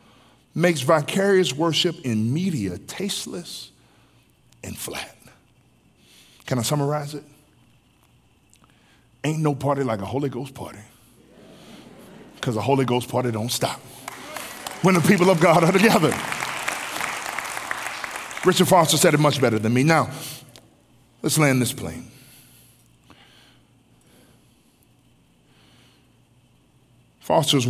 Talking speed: 105 wpm